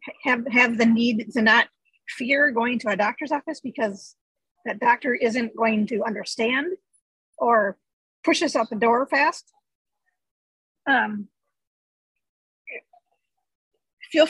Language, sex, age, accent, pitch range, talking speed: English, female, 50-69, American, 230-295 Hz, 120 wpm